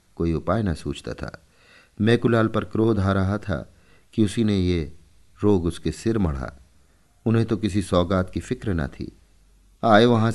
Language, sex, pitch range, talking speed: Hindi, male, 85-115 Hz, 175 wpm